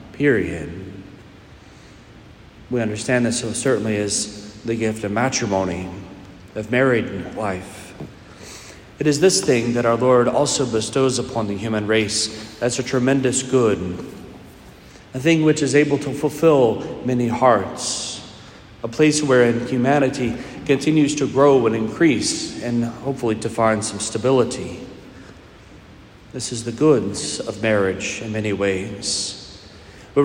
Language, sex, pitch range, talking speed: English, male, 110-135 Hz, 130 wpm